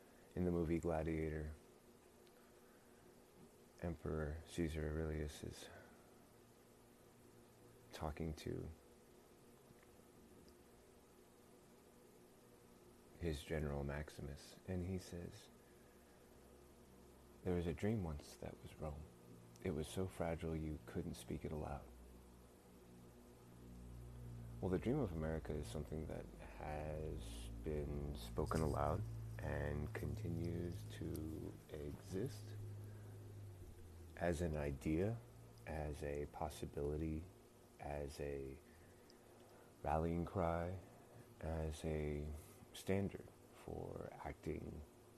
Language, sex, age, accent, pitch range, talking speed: English, male, 30-49, American, 70-90 Hz, 85 wpm